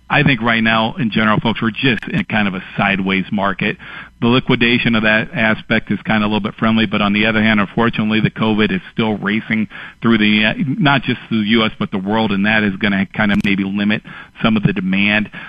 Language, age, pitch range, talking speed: English, 50-69, 110-125 Hz, 235 wpm